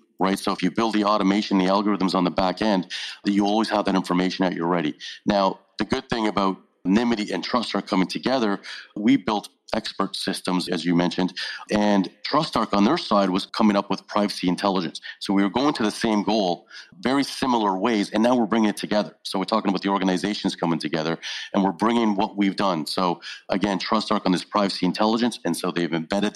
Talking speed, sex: 210 wpm, male